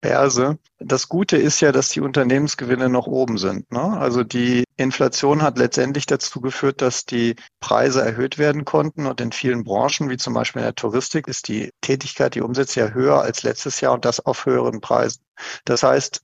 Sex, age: male, 50-69